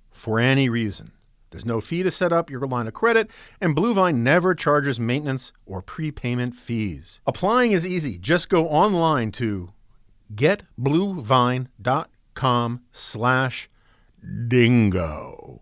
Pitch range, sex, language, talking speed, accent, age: 120-185 Hz, male, English, 115 wpm, American, 50-69